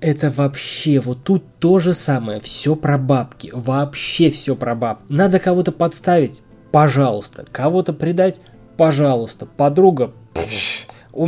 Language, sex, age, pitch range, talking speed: Russian, male, 20-39, 135-180 Hz, 130 wpm